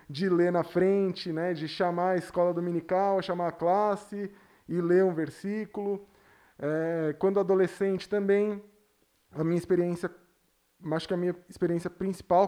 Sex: male